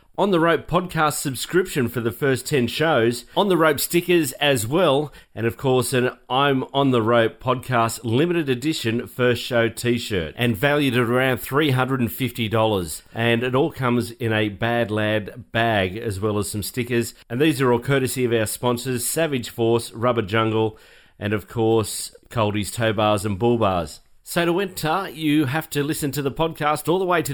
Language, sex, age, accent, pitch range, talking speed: English, male, 40-59, Australian, 115-145 Hz, 185 wpm